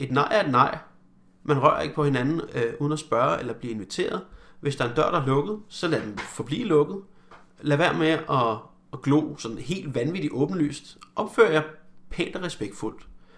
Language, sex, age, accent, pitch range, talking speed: Danish, male, 30-49, native, 135-165 Hz, 200 wpm